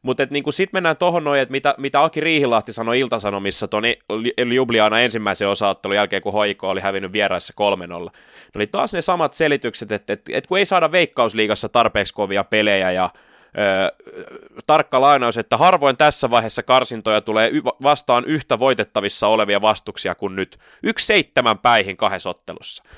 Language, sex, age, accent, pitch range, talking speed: Finnish, male, 20-39, native, 105-150 Hz, 155 wpm